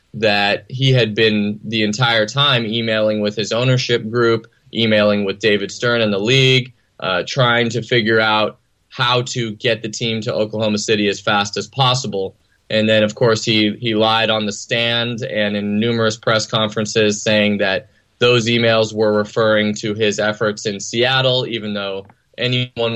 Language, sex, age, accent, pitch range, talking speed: English, male, 20-39, American, 105-125 Hz, 170 wpm